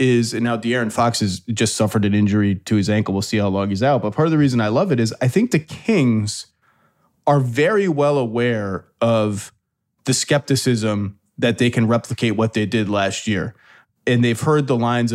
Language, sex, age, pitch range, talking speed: English, male, 30-49, 115-140 Hz, 210 wpm